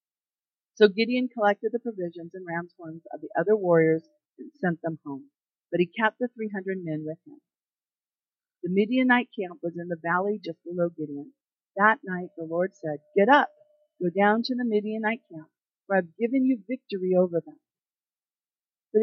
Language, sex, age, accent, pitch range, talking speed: English, female, 50-69, American, 175-240 Hz, 175 wpm